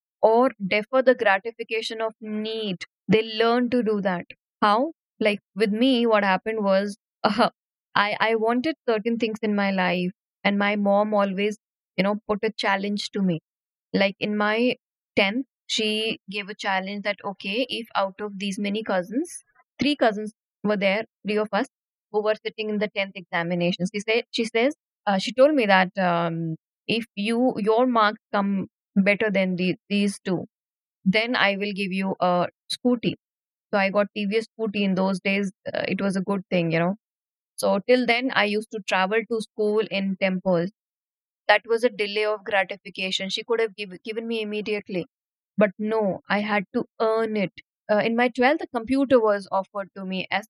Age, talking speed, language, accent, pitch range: 20-39, 180 wpm, English, Indian, 195-225 Hz